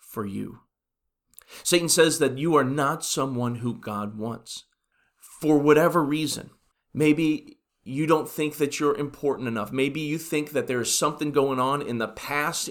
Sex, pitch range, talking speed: male, 115-145 Hz, 165 wpm